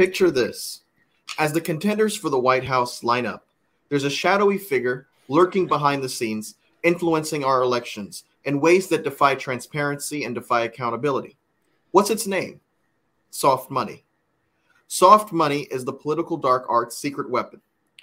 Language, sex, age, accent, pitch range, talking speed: English, male, 30-49, American, 130-165 Hz, 145 wpm